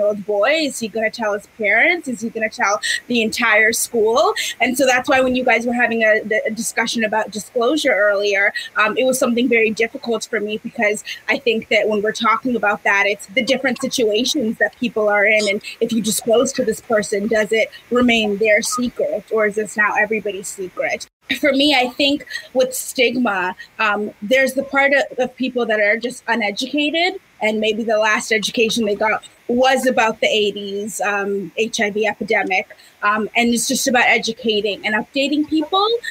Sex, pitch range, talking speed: female, 210-260 Hz, 190 wpm